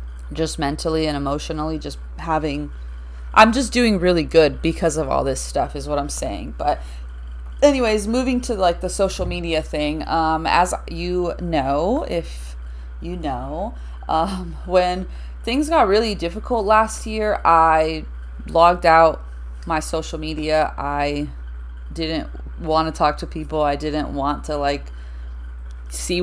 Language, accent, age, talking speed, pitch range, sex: English, American, 20-39, 145 wpm, 140-180 Hz, female